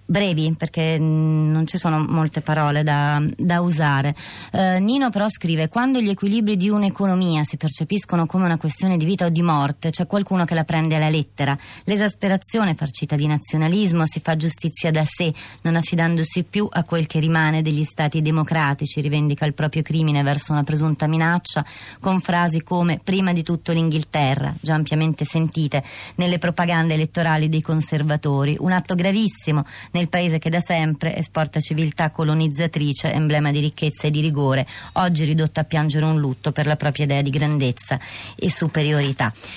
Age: 20-39